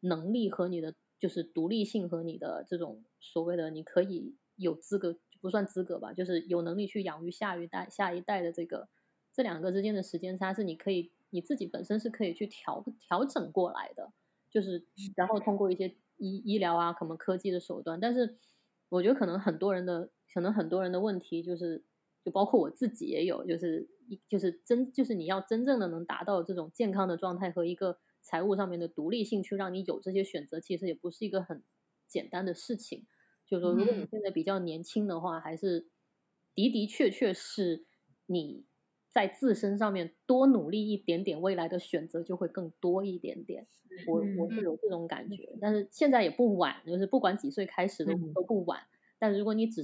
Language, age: English, 20-39